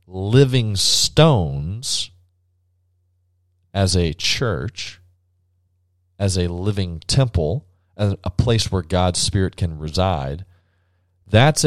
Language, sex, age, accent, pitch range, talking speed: English, male, 30-49, American, 85-100 Hz, 95 wpm